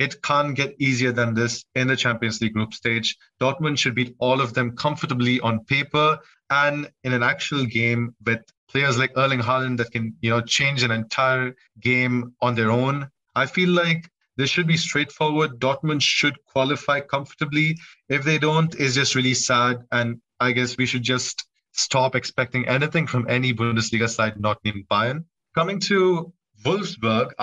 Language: English